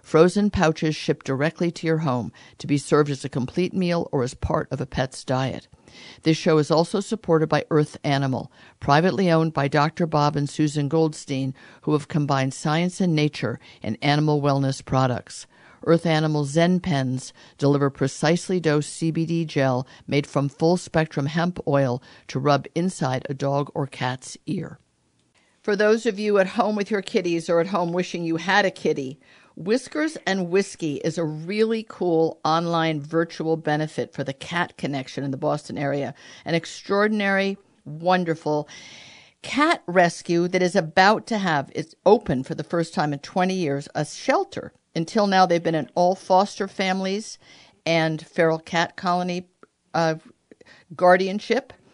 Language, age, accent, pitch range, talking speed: English, 50-69, American, 145-180 Hz, 160 wpm